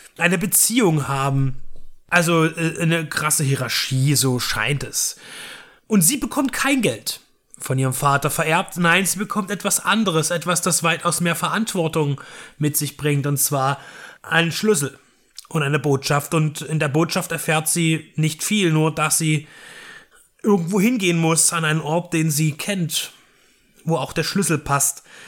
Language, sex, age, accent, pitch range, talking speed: German, male, 30-49, German, 150-185 Hz, 150 wpm